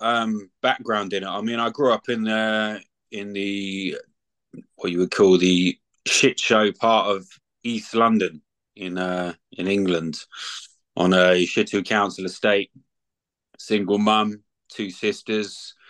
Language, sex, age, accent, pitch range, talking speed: English, male, 20-39, British, 95-105 Hz, 145 wpm